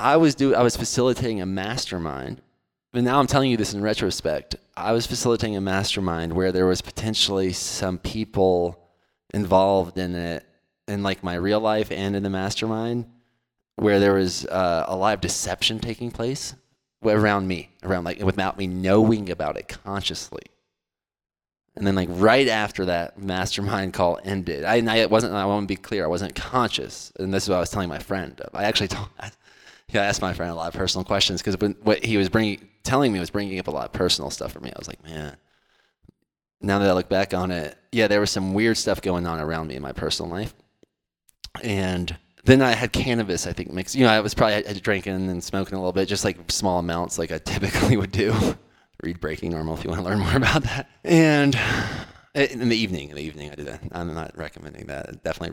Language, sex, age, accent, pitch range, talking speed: English, male, 20-39, American, 90-110 Hz, 215 wpm